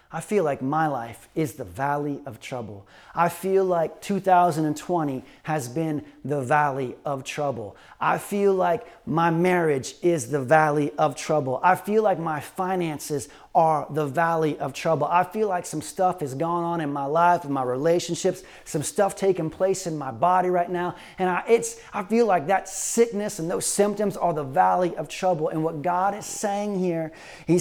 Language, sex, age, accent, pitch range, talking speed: English, male, 30-49, American, 155-195 Hz, 185 wpm